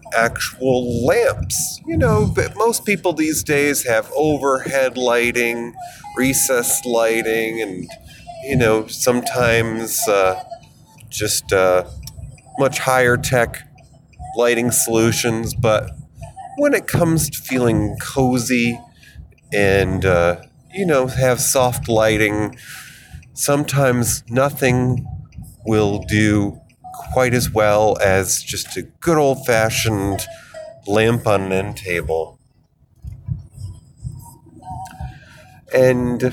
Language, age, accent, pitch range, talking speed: English, 30-49, American, 110-140 Hz, 95 wpm